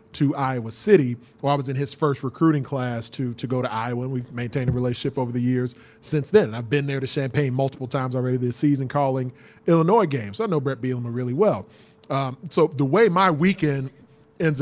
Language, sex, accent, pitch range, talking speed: English, male, American, 135-160 Hz, 220 wpm